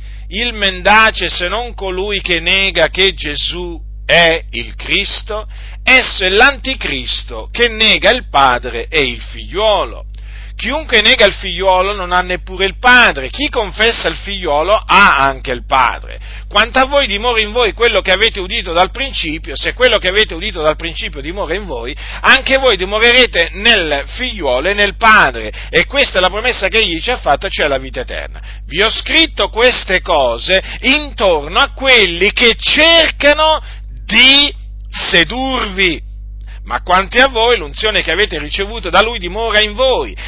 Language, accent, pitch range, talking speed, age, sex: Italian, native, 175-250 Hz, 160 wpm, 40-59, male